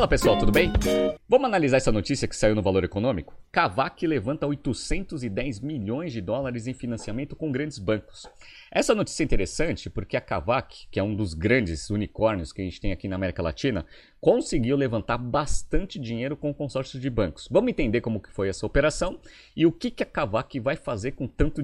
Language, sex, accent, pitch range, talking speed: Portuguese, male, Brazilian, 105-145 Hz, 190 wpm